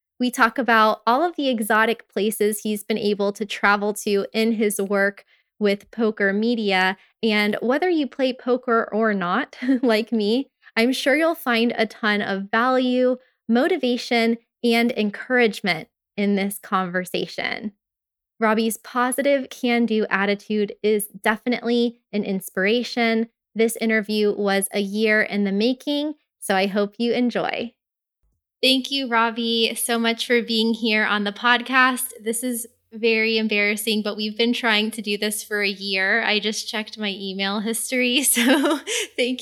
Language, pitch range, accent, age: English, 210-240 Hz, American, 20-39